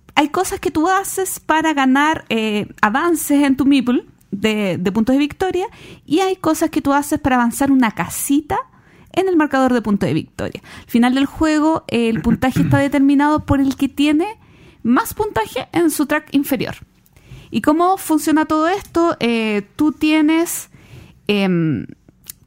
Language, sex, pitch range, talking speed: Spanish, female, 230-310 Hz, 165 wpm